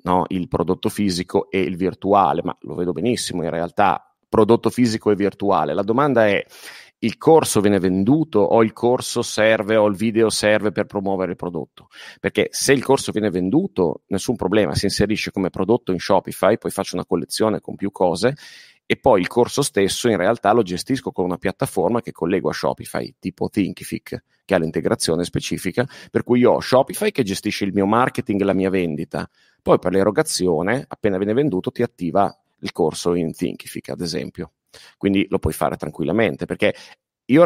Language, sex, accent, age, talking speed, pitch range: Italian, male, native, 40-59, 180 wpm, 90-115 Hz